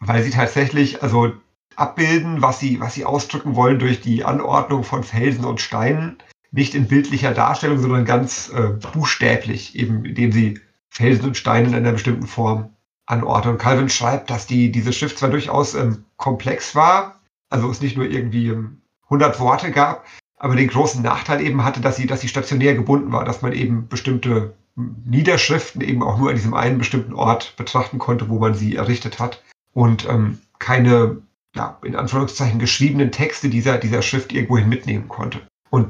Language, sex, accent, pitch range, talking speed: German, male, German, 120-140 Hz, 175 wpm